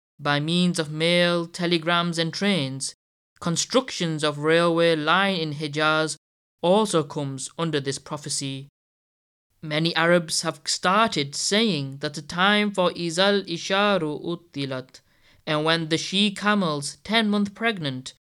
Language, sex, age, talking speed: English, male, 20-39, 115 wpm